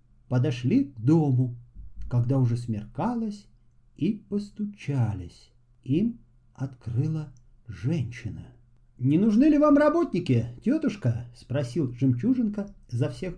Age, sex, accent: 50-69, male, native